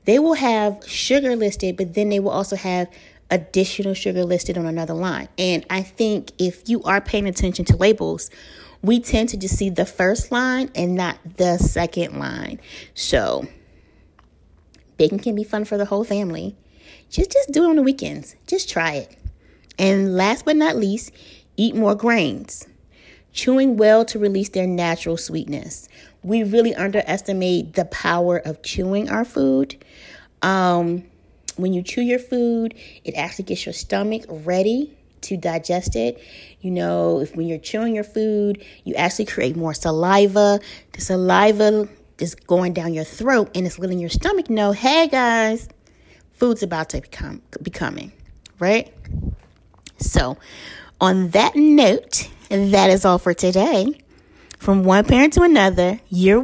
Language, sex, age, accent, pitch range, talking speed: English, female, 30-49, American, 180-230 Hz, 155 wpm